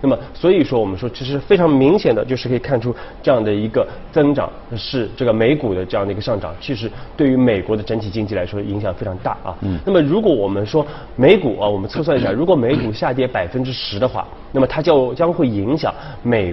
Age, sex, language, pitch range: 20-39, male, Chinese, 100-140 Hz